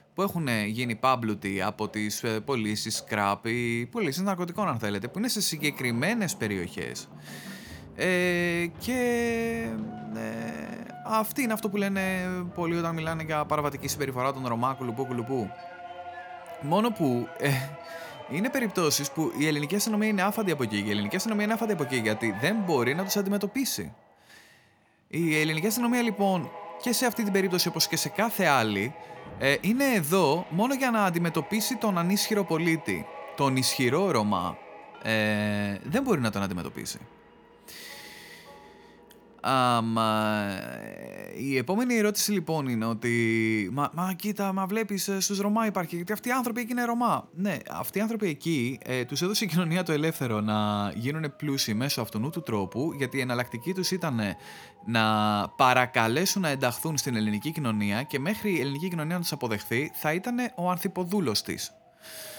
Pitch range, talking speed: 120-200 Hz, 155 wpm